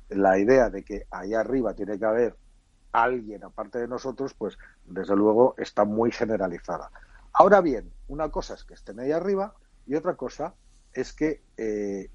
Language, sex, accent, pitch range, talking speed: Spanish, male, Spanish, 110-155 Hz, 170 wpm